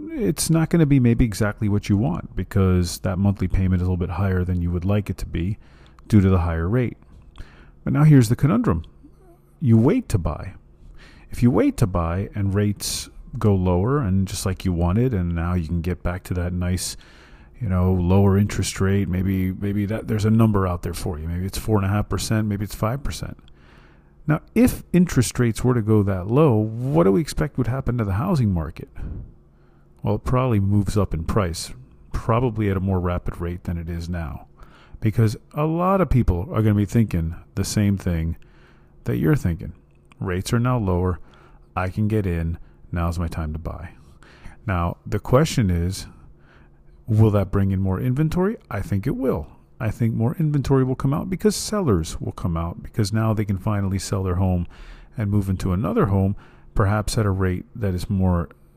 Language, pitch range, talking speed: English, 85-110 Hz, 205 wpm